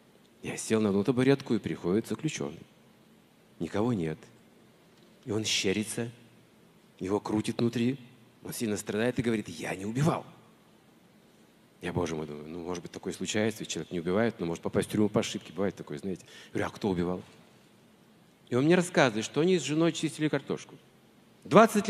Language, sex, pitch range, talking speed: Russian, male, 105-155 Hz, 170 wpm